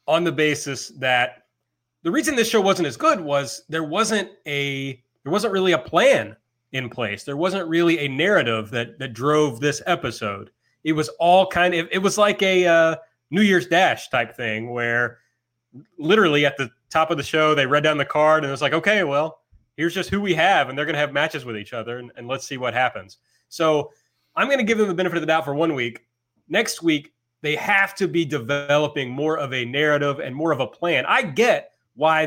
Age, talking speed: 30-49, 220 wpm